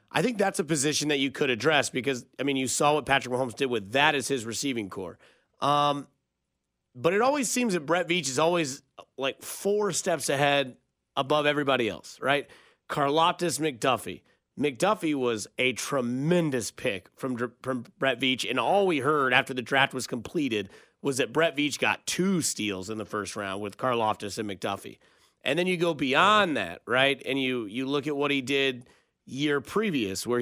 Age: 30-49